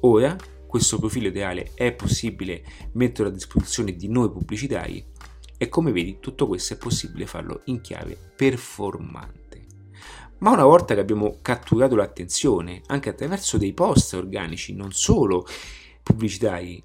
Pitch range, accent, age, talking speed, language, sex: 95-120 Hz, native, 30-49, 135 wpm, Italian, male